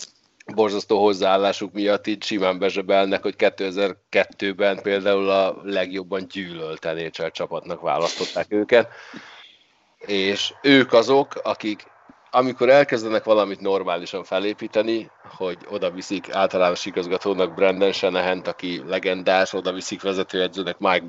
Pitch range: 95-105 Hz